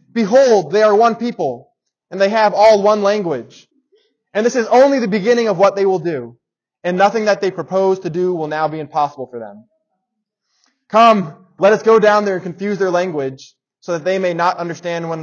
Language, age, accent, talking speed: English, 20-39, American, 205 wpm